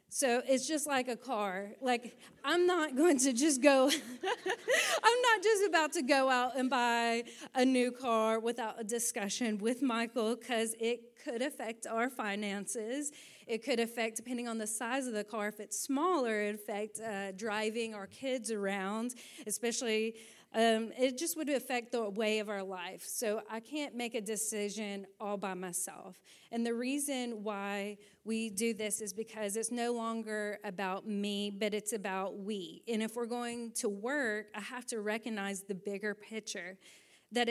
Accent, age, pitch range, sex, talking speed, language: American, 30-49, 210-245 Hz, female, 170 wpm, English